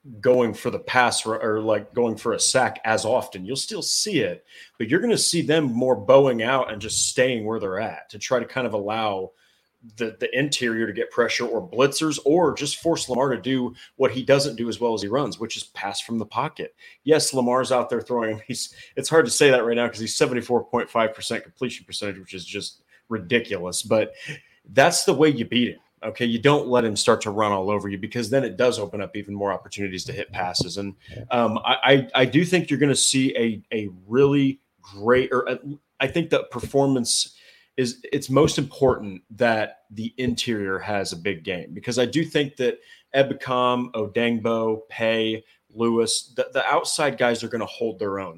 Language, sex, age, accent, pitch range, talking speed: English, male, 30-49, American, 110-135 Hz, 210 wpm